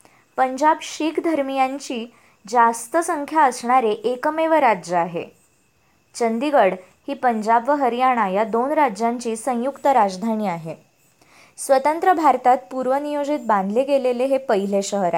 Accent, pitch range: native, 215-275 Hz